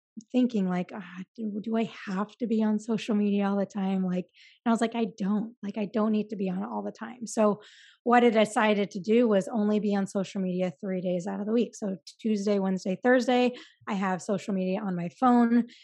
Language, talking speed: English, 235 wpm